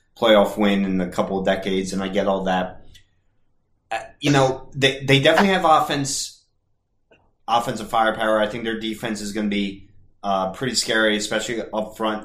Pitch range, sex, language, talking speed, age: 100-125 Hz, male, English, 170 wpm, 30-49